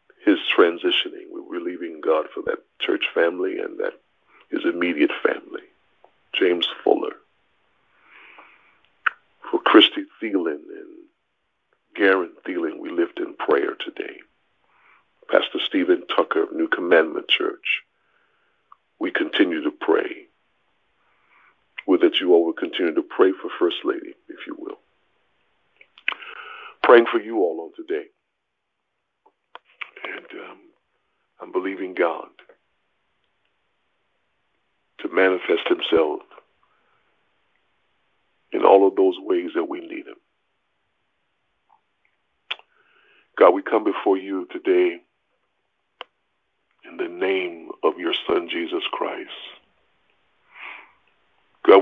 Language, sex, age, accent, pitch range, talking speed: English, male, 50-69, American, 345-405 Hz, 105 wpm